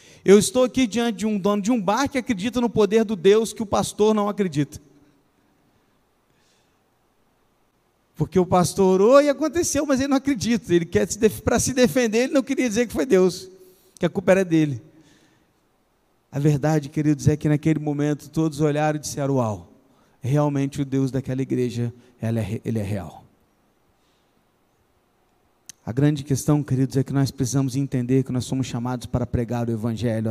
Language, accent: Portuguese, Brazilian